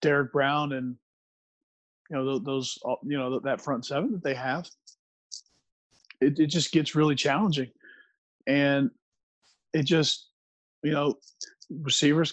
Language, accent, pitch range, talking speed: English, American, 130-145 Hz, 125 wpm